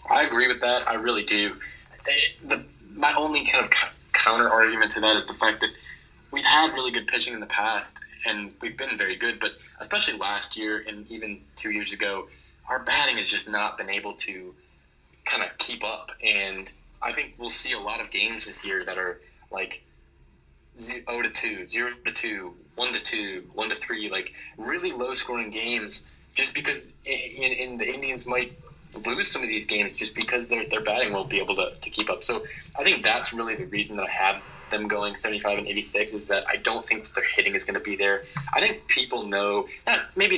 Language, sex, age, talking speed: English, male, 20-39, 210 wpm